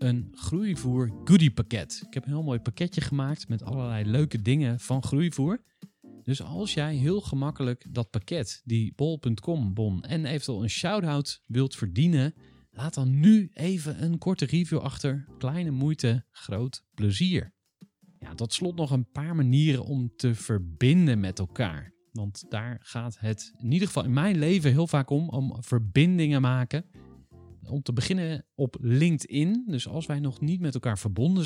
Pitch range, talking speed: 115-155 Hz, 160 wpm